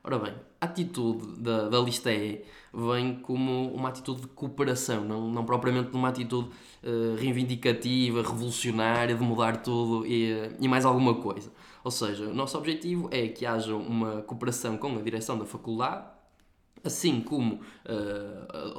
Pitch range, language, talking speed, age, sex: 115-135 Hz, Portuguese, 155 wpm, 20-39, male